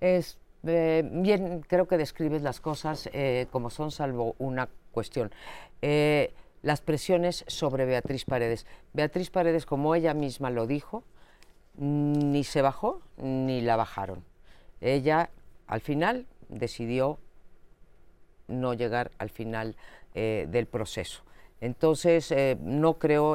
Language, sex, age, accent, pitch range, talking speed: Spanish, female, 50-69, Spanish, 125-155 Hz, 120 wpm